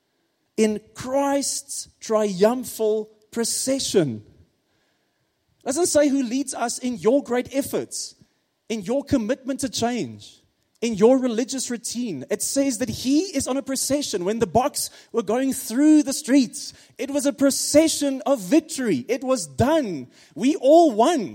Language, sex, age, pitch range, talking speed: English, male, 30-49, 215-275 Hz, 145 wpm